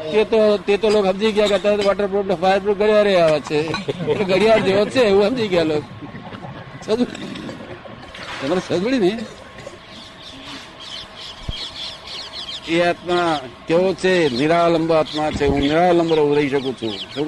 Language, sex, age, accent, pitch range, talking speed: Gujarati, male, 60-79, native, 140-180 Hz, 50 wpm